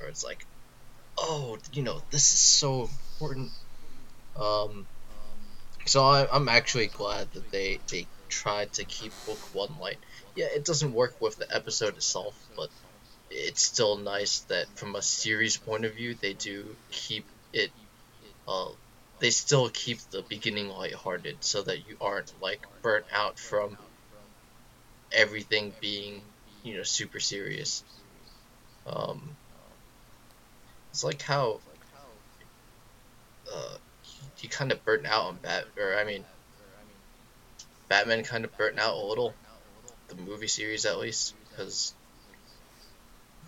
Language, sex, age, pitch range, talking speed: English, male, 20-39, 105-150 Hz, 130 wpm